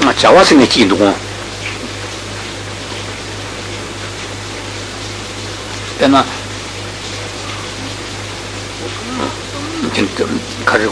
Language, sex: Italian, male